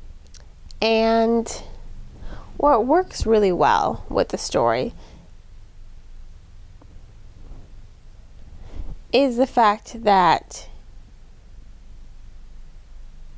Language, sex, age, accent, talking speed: English, female, 20-39, American, 55 wpm